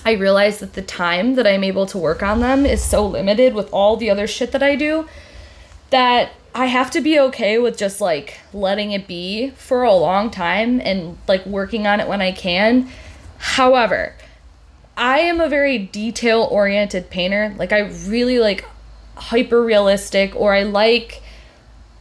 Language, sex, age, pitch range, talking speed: English, female, 20-39, 195-255 Hz, 175 wpm